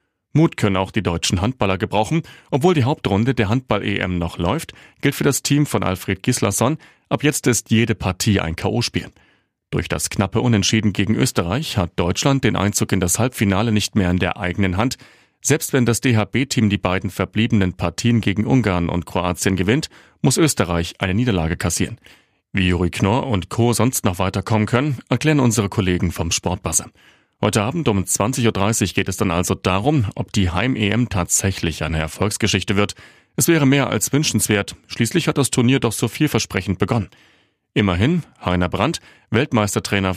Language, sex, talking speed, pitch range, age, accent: German, male, 170 wpm, 95-125 Hz, 40-59, German